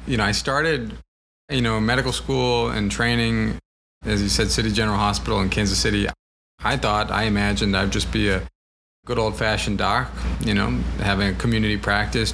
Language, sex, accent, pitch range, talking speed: English, male, American, 95-115 Hz, 175 wpm